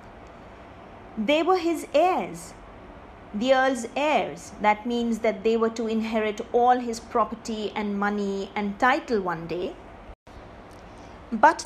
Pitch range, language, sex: 230-315 Hz, English, female